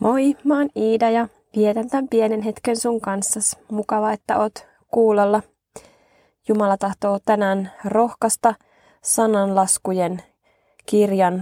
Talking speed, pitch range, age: 110 wpm, 180-215 Hz, 20-39